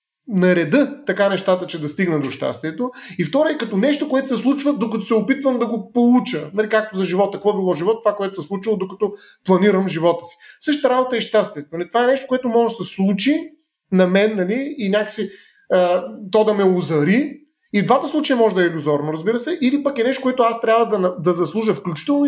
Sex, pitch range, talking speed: male, 180-250 Hz, 215 wpm